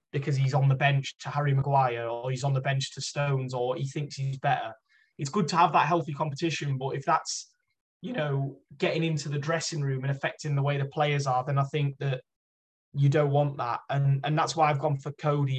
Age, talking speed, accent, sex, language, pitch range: 20-39, 230 wpm, British, male, English, 135-160 Hz